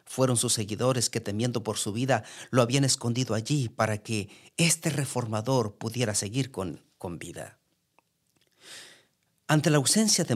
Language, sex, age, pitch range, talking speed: English, male, 50-69, 110-150 Hz, 145 wpm